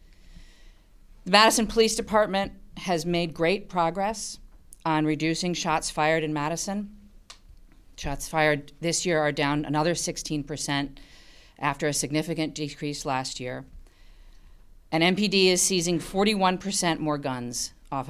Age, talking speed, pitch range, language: 40-59, 125 wpm, 125-190 Hz, English